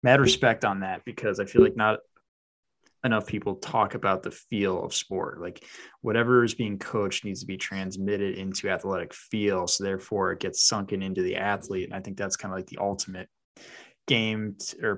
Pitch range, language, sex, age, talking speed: 100-115 Hz, English, male, 20-39, 190 wpm